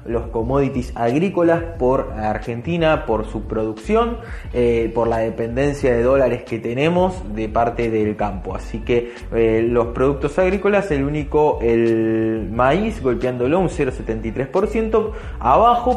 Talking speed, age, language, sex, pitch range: 130 wpm, 20-39, Spanish, male, 115-155 Hz